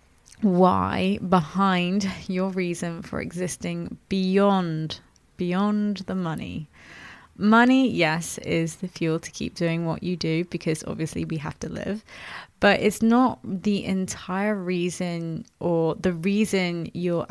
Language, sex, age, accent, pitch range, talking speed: English, female, 20-39, British, 170-205 Hz, 130 wpm